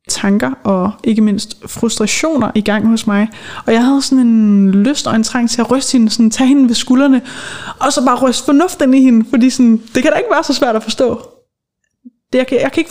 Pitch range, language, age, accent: 210-240 Hz, Danish, 20-39, native